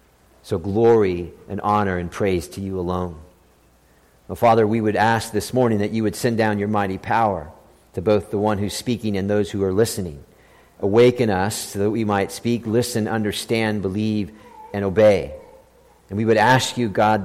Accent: American